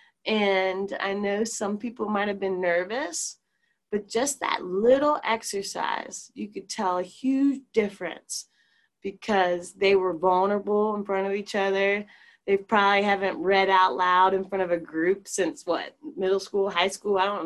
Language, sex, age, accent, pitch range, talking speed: English, female, 20-39, American, 175-220 Hz, 165 wpm